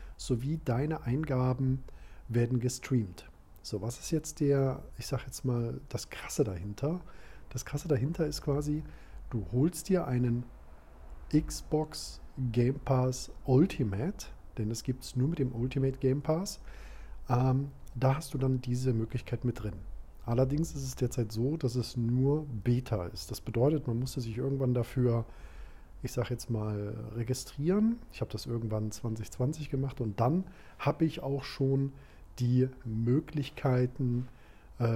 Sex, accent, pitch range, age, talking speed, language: male, German, 115-140 Hz, 40-59, 150 wpm, German